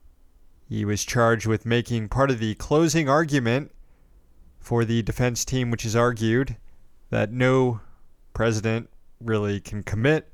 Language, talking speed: English, 135 wpm